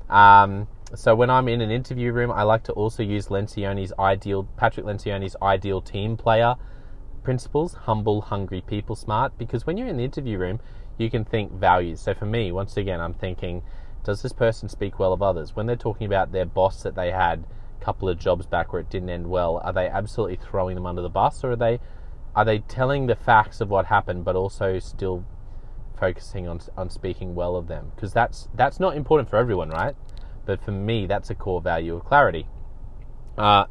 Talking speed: 205 wpm